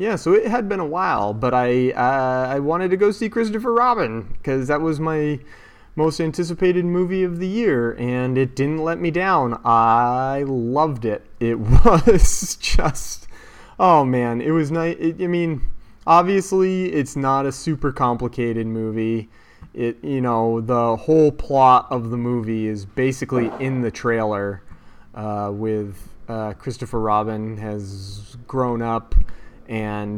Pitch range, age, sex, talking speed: 110-130 Hz, 30-49, male, 150 wpm